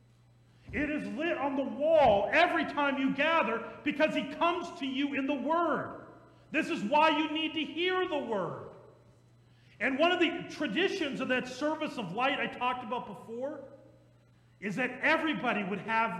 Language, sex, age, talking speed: English, male, 40-59, 170 wpm